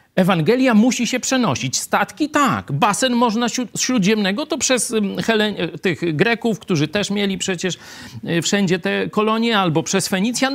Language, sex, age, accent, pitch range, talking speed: Polish, male, 50-69, native, 120-200 Hz, 140 wpm